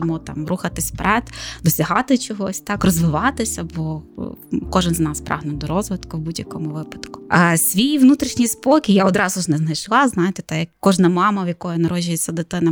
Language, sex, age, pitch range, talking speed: Ukrainian, female, 20-39, 175-235 Hz, 170 wpm